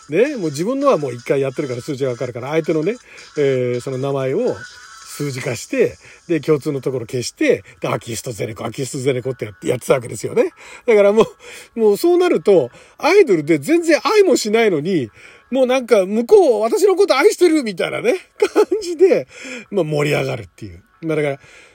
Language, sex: Japanese, male